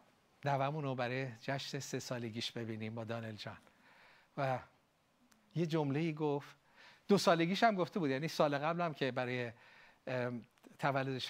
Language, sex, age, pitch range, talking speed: Persian, male, 50-69, 130-170 Hz, 140 wpm